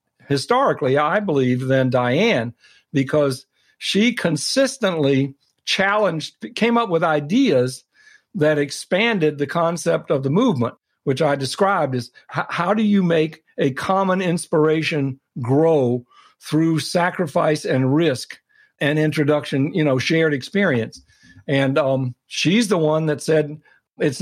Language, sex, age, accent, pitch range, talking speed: English, male, 60-79, American, 140-185 Hz, 125 wpm